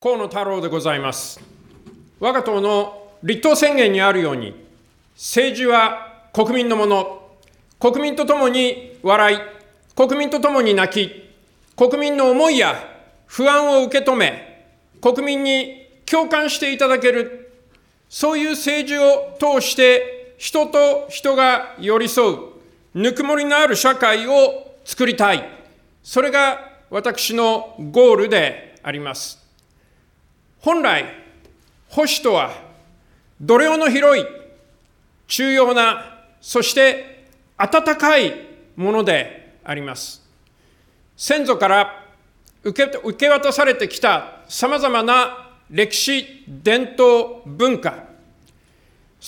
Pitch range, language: 225-285 Hz, Japanese